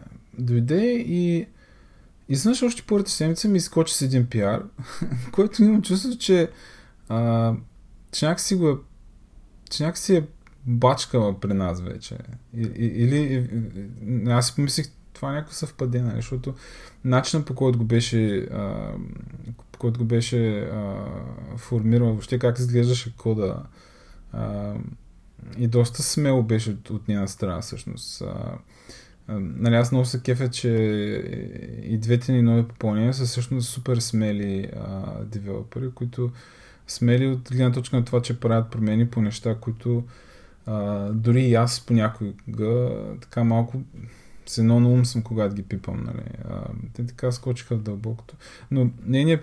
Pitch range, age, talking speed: 115-130 Hz, 20-39, 140 wpm